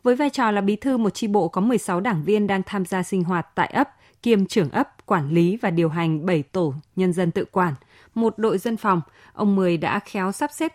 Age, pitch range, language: 20-39, 175-230 Hz, Vietnamese